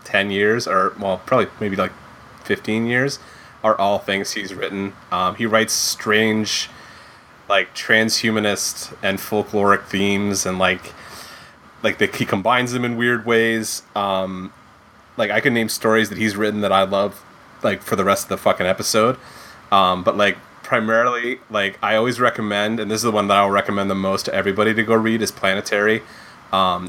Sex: male